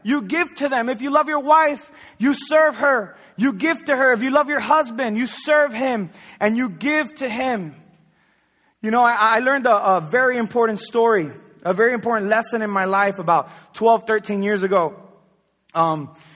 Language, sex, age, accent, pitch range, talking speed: English, male, 20-39, American, 165-225 Hz, 190 wpm